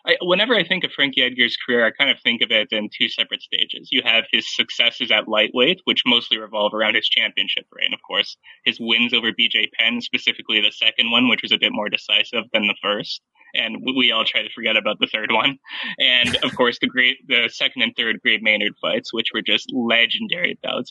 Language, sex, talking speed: English, male, 220 wpm